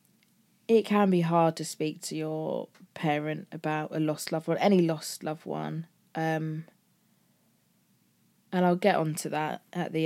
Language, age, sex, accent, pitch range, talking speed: English, 20-39, female, British, 155-180 Hz, 160 wpm